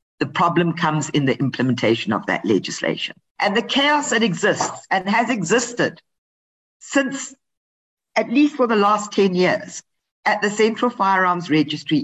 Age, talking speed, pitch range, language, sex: 50-69, 150 wpm, 160-200 Hz, English, female